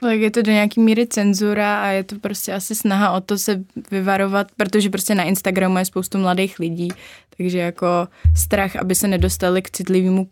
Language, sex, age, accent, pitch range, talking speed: Czech, female, 20-39, native, 180-200 Hz, 185 wpm